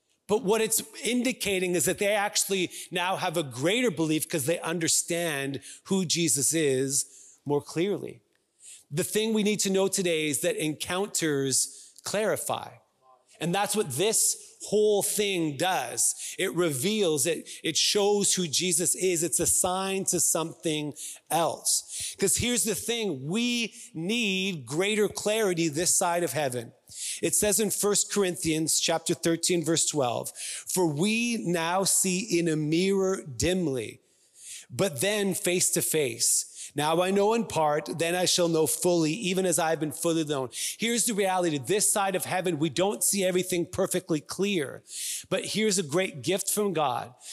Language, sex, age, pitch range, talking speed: English, male, 30-49, 160-200 Hz, 155 wpm